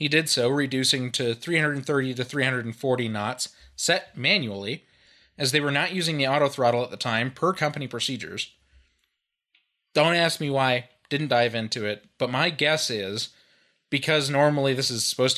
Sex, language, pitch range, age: male, English, 120-160 Hz, 20-39